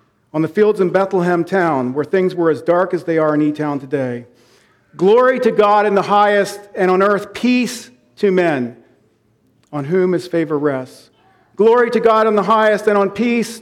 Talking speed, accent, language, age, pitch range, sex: 190 wpm, American, English, 50-69, 175-215 Hz, male